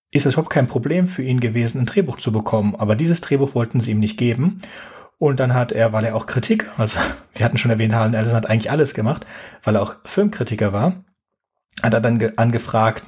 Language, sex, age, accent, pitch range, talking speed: German, male, 30-49, German, 110-135 Hz, 215 wpm